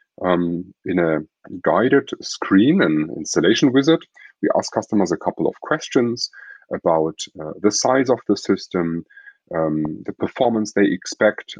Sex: male